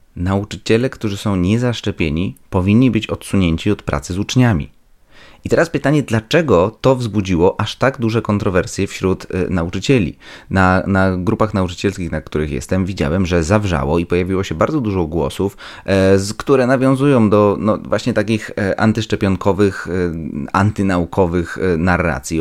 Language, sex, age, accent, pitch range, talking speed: Polish, male, 30-49, native, 85-110 Hz, 125 wpm